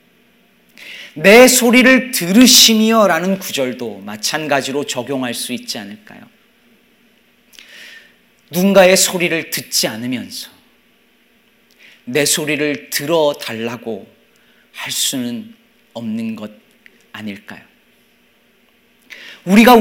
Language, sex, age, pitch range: Korean, male, 40-59, 190-255 Hz